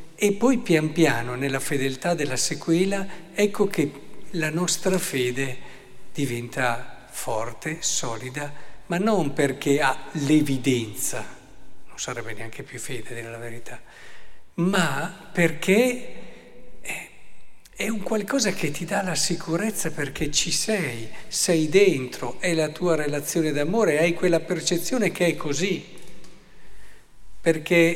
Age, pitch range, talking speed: 50-69, 130-175 Hz, 120 wpm